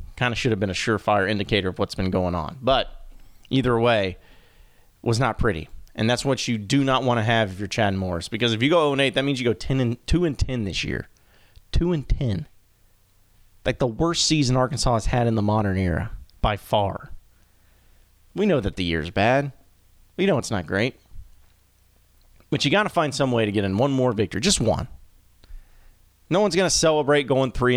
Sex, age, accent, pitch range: male, 30-49, American, 95-135 Hz